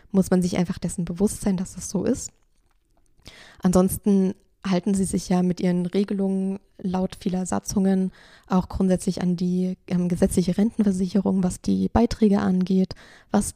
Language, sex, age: German, female, 20-39